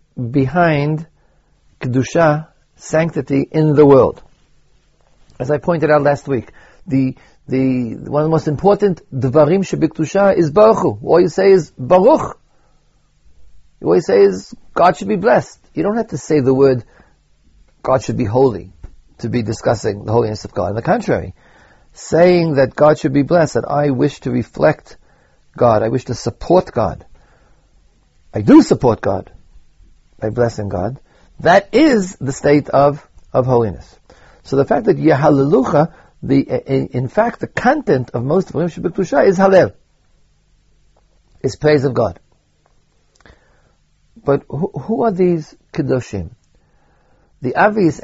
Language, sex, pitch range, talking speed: English, male, 115-160 Hz, 145 wpm